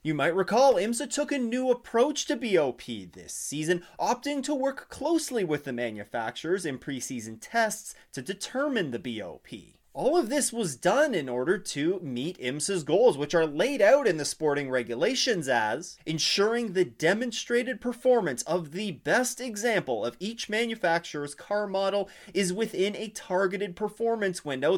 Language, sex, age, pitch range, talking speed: English, male, 30-49, 150-230 Hz, 155 wpm